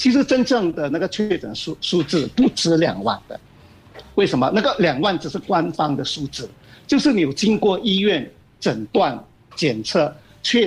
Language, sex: Chinese, male